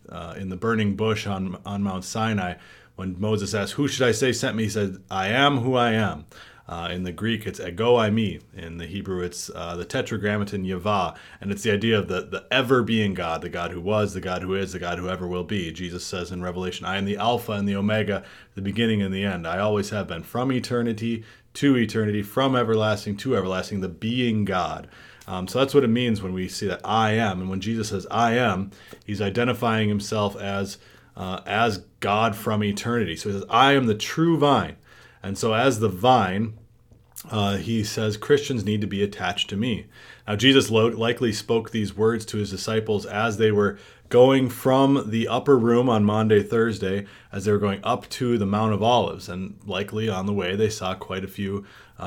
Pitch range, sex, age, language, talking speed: 95-115 Hz, male, 30-49, English, 215 wpm